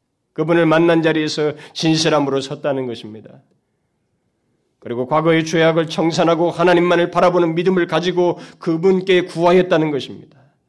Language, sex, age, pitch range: Korean, male, 30-49, 115-185 Hz